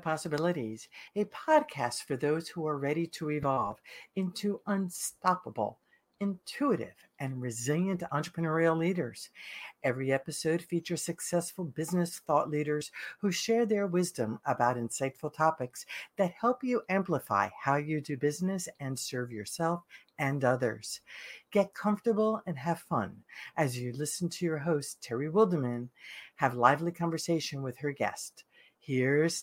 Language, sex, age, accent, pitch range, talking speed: English, female, 60-79, American, 140-185 Hz, 130 wpm